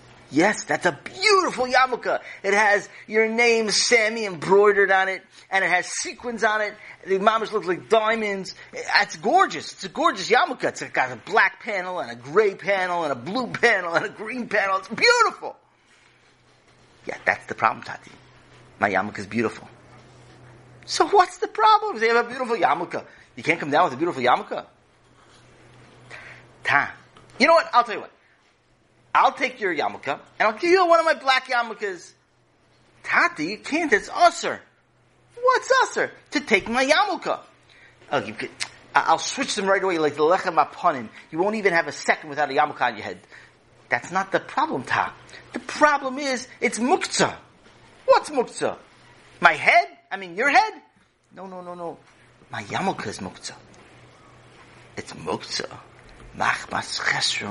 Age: 40-59